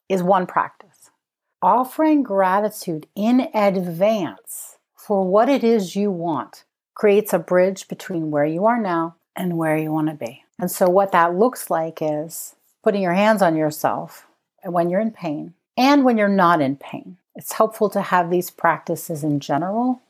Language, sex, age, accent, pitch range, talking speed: English, female, 40-59, American, 160-210 Hz, 170 wpm